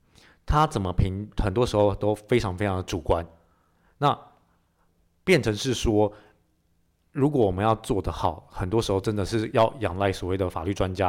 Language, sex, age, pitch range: Chinese, male, 20-39, 95-115 Hz